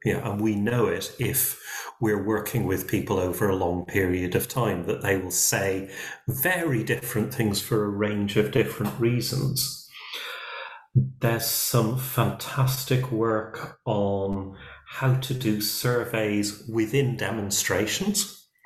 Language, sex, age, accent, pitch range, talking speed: English, male, 40-59, British, 105-130 Hz, 130 wpm